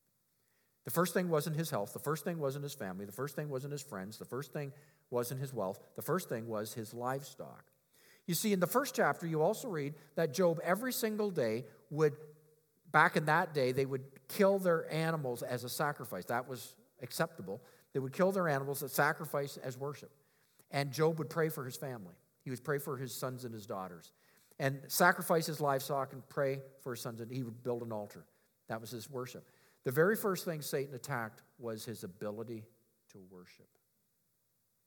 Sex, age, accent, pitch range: male, 50-69, American, 120-160 Hz